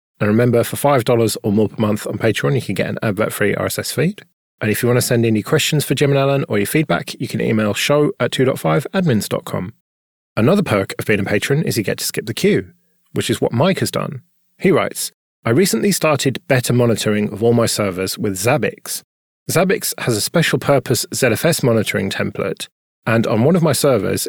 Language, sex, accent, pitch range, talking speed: English, male, British, 105-145 Hz, 210 wpm